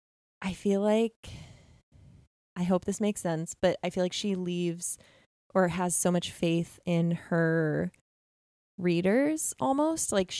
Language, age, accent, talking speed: English, 20-39, American, 140 wpm